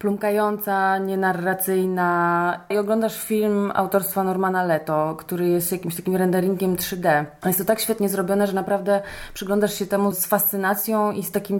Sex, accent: female, native